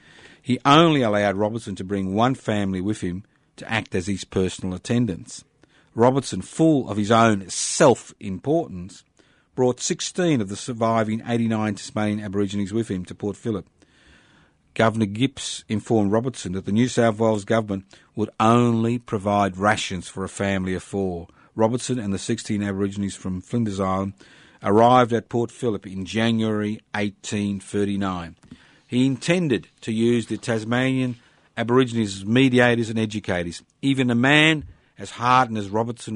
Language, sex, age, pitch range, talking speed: English, male, 50-69, 100-120 Hz, 145 wpm